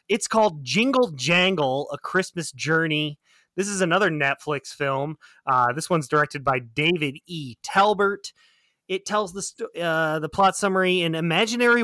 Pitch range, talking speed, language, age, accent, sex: 140-185 Hz, 150 wpm, English, 30-49, American, male